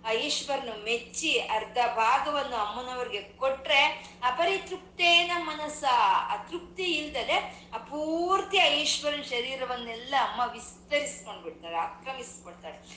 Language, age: Kannada, 20-39